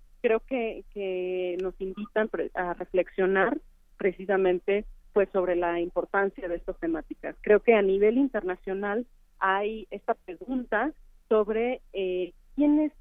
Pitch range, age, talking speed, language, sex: 180-220 Hz, 40-59, 120 wpm, Spanish, female